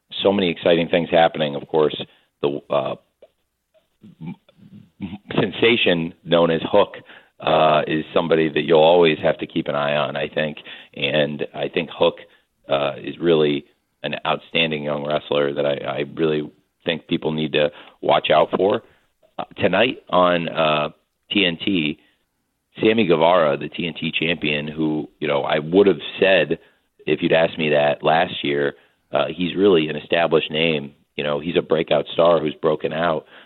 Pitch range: 75-90 Hz